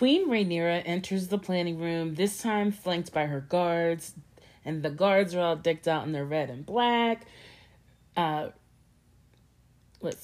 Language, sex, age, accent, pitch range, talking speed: English, female, 30-49, American, 145-180 Hz, 150 wpm